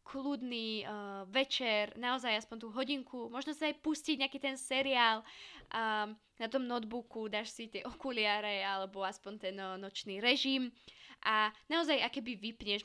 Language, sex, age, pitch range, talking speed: Slovak, female, 20-39, 205-255 Hz, 155 wpm